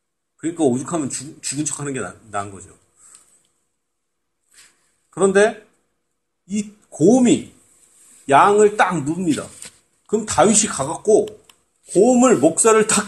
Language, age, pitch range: Korean, 40-59, 175-255 Hz